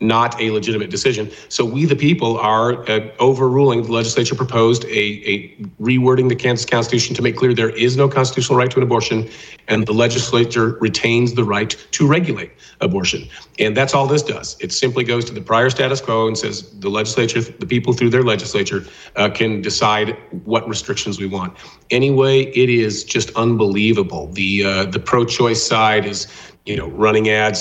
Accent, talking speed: American, 185 wpm